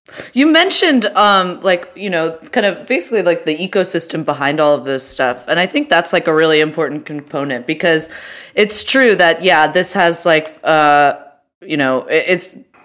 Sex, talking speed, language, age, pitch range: female, 180 wpm, English, 20-39, 150-190 Hz